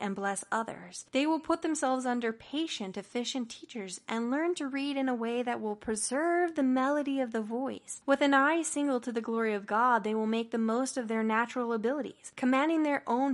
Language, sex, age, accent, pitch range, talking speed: English, female, 10-29, American, 205-260 Hz, 210 wpm